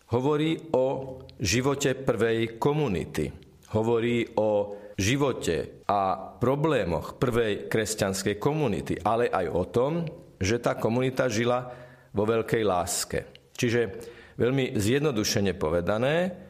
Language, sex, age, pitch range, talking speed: Slovak, male, 40-59, 110-140 Hz, 100 wpm